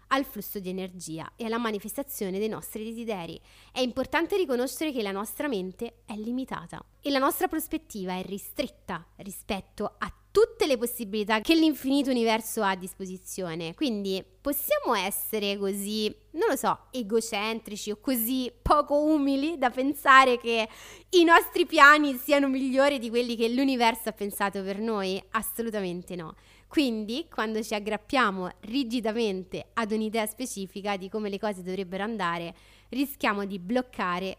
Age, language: 20-39, Italian